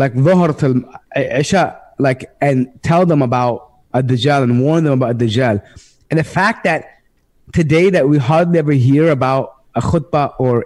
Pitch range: 130-170 Hz